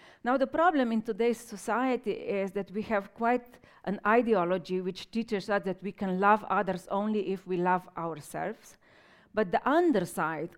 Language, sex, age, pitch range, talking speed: English, female, 40-59, 185-220 Hz, 165 wpm